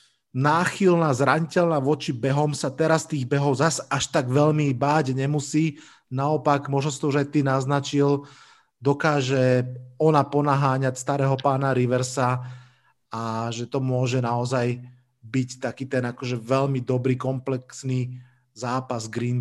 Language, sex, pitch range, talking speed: Slovak, male, 125-150 Hz, 125 wpm